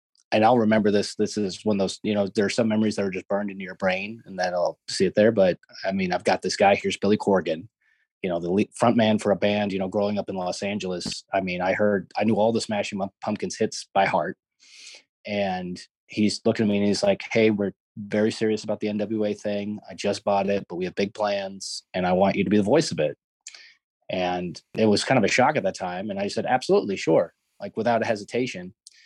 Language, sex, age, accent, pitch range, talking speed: English, male, 30-49, American, 100-110 Hz, 250 wpm